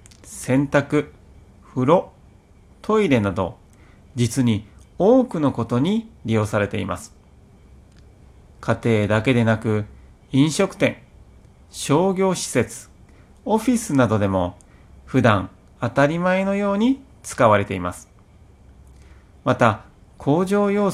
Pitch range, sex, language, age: 100-150 Hz, male, Japanese, 30-49